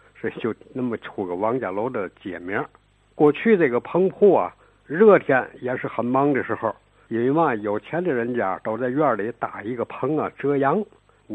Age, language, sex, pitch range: 60-79, Chinese, male, 120-160 Hz